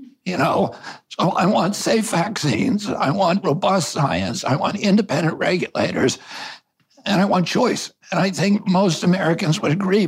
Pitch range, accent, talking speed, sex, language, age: 155-200 Hz, American, 155 wpm, male, English, 60-79